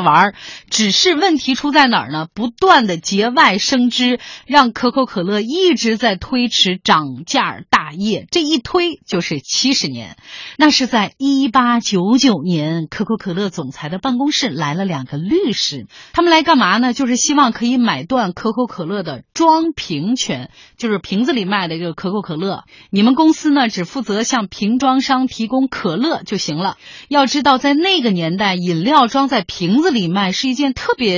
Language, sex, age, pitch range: Chinese, female, 30-49, 185-270 Hz